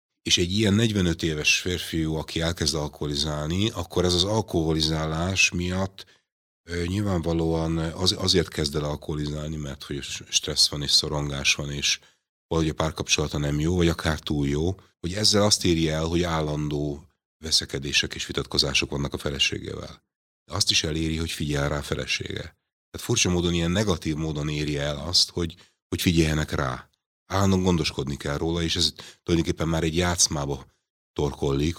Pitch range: 75-90 Hz